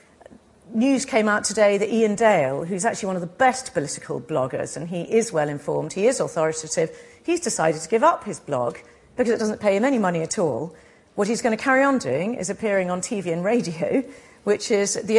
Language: English